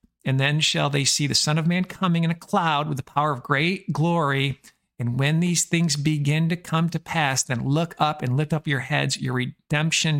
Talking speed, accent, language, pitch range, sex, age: 225 wpm, American, English, 135-160 Hz, male, 50-69